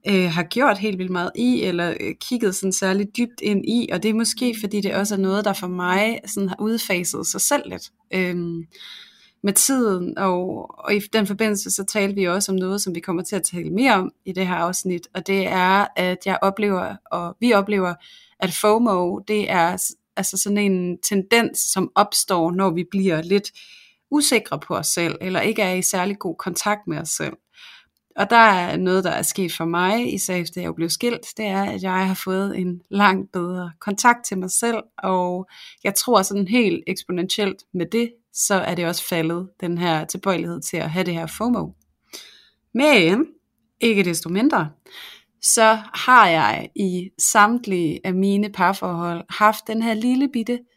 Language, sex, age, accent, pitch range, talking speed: Danish, female, 30-49, native, 180-220 Hz, 185 wpm